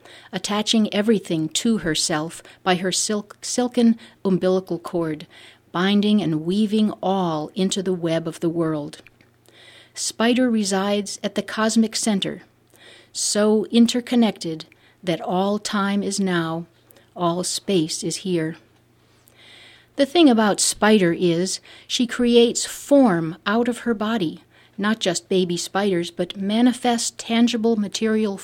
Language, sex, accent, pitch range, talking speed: English, female, American, 175-225 Hz, 120 wpm